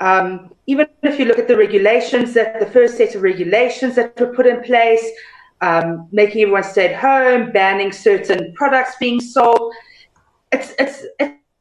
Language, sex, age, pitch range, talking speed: English, female, 30-49, 200-270 Hz, 160 wpm